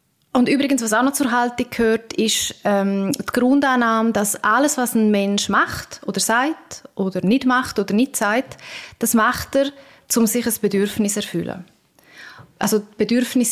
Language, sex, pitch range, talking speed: German, female, 200-255 Hz, 165 wpm